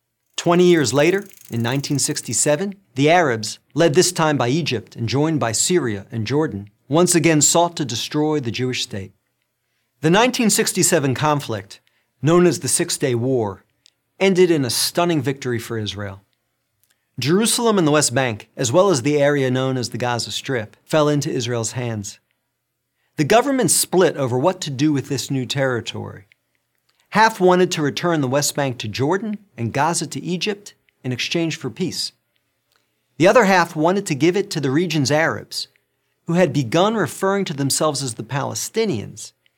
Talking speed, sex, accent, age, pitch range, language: 165 wpm, male, American, 40-59, 120-175 Hz, English